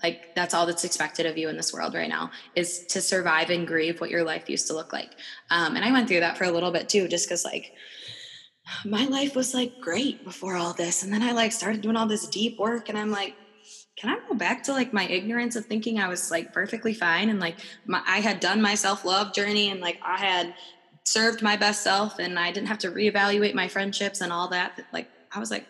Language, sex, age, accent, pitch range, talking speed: English, female, 20-39, American, 175-215 Hz, 250 wpm